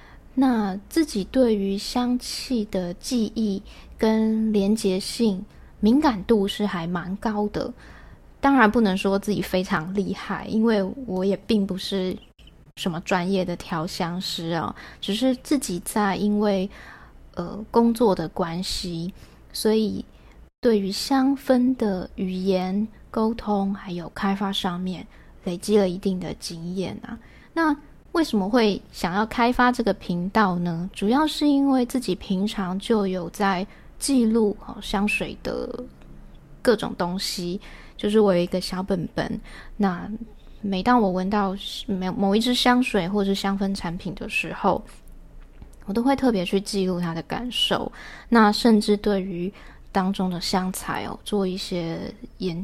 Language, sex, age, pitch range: Chinese, female, 20-39, 185-225 Hz